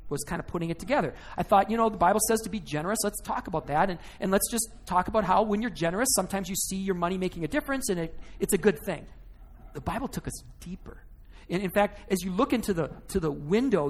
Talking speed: 260 wpm